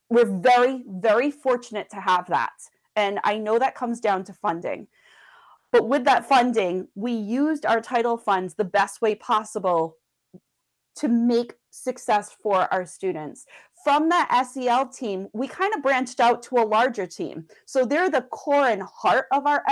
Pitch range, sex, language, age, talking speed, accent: 210-280 Hz, female, English, 30-49, 165 wpm, American